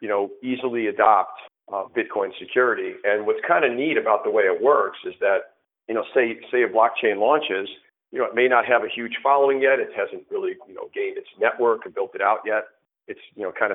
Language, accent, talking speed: English, American, 230 wpm